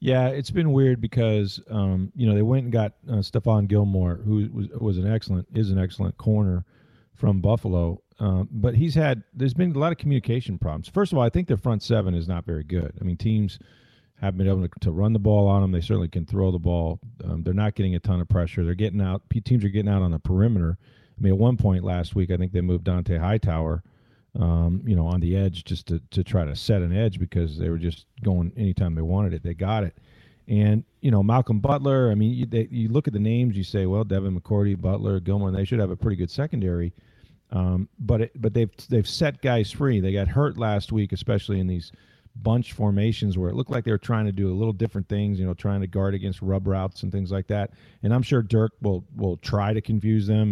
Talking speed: 245 wpm